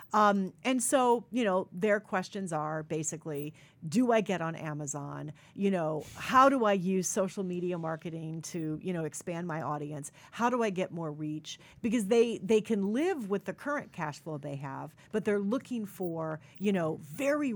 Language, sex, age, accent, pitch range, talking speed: English, female, 40-59, American, 160-215 Hz, 180 wpm